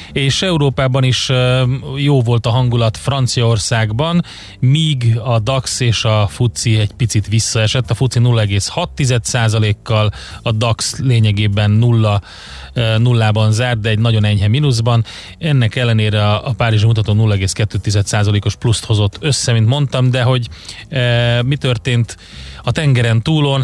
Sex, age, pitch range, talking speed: male, 30-49, 110-125 Hz, 130 wpm